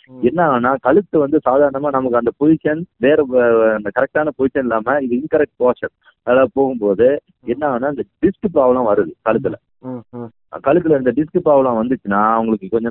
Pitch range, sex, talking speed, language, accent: 110-145 Hz, male, 120 wpm, Tamil, native